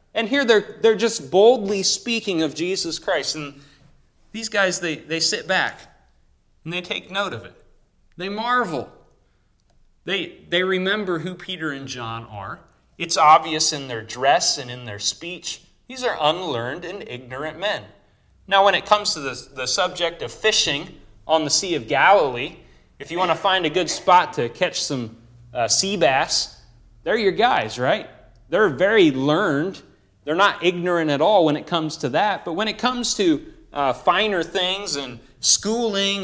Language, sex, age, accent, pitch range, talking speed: English, male, 30-49, American, 120-190 Hz, 170 wpm